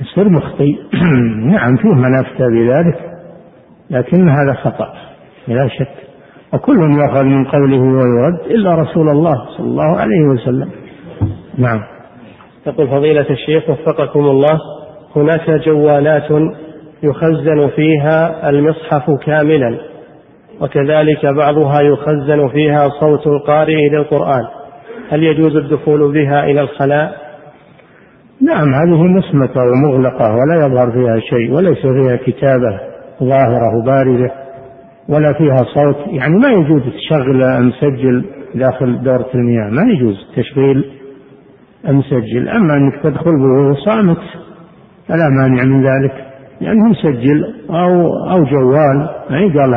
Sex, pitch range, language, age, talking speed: male, 130-155 Hz, Arabic, 50-69, 115 wpm